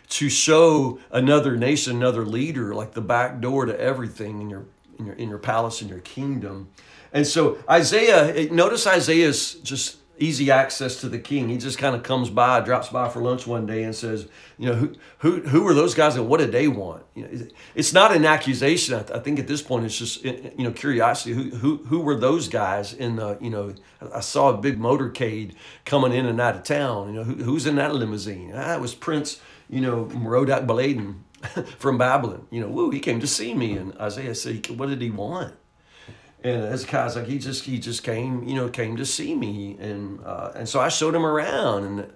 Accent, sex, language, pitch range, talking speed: American, male, English, 115-145 Hz, 215 wpm